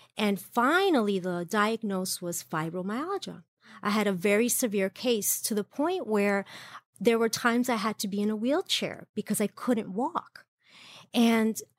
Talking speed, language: 160 wpm, English